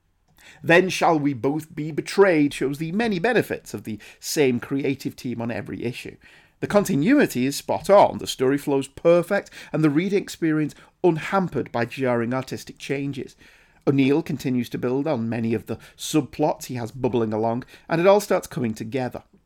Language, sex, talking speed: English, male, 170 wpm